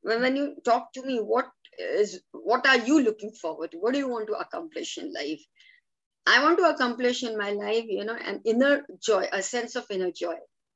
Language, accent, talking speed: English, Indian, 220 wpm